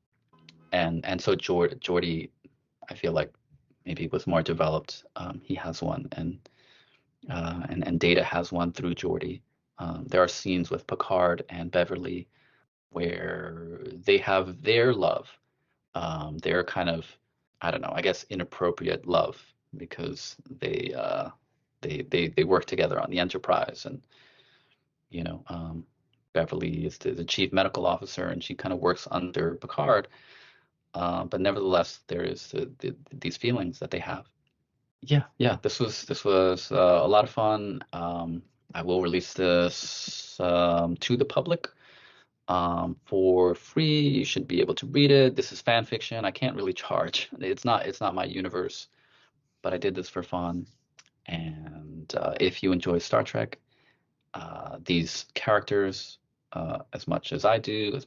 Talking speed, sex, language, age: 160 wpm, male, English, 30-49